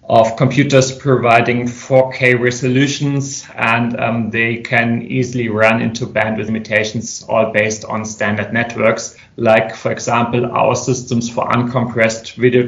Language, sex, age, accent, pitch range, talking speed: English, male, 30-49, German, 110-120 Hz, 130 wpm